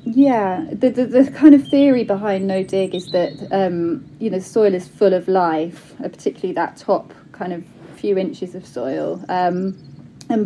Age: 30-49